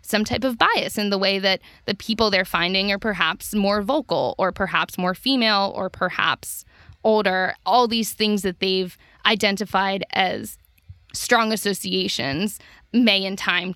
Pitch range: 185-215 Hz